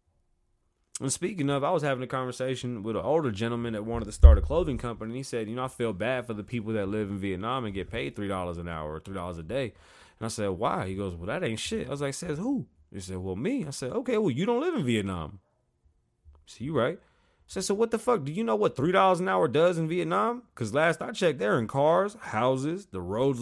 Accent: American